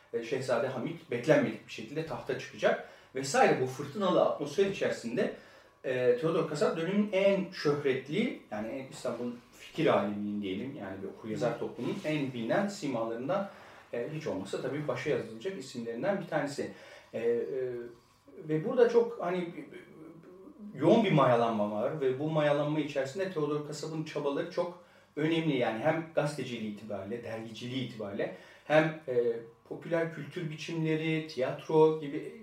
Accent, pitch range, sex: native, 120-160 Hz, male